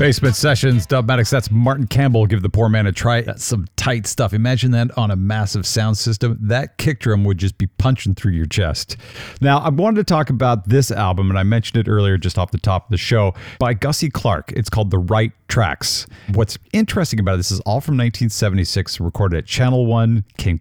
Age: 50-69